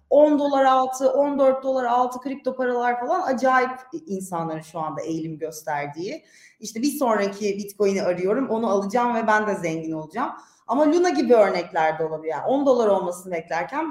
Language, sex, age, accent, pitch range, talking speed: Turkish, female, 30-49, native, 185-255 Hz, 160 wpm